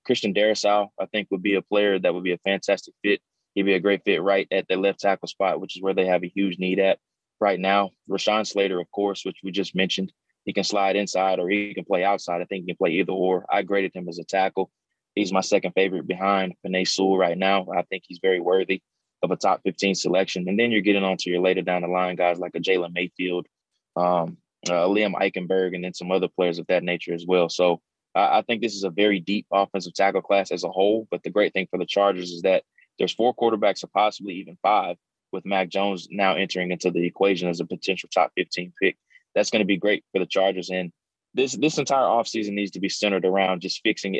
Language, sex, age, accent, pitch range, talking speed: English, male, 20-39, American, 90-100 Hz, 245 wpm